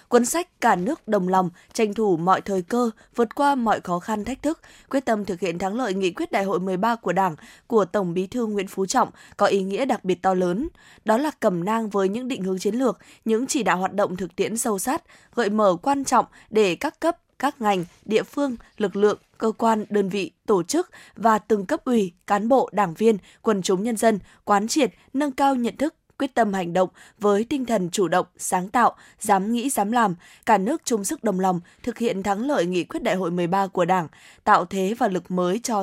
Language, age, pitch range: Vietnamese, 20-39, 190-245 Hz